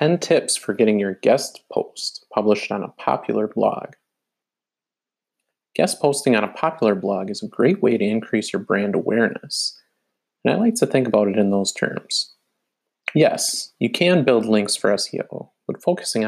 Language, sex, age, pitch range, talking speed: English, male, 30-49, 105-140 Hz, 170 wpm